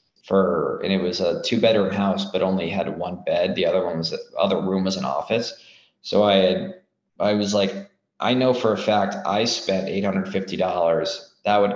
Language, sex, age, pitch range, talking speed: English, male, 20-39, 95-115 Hz, 200 wpm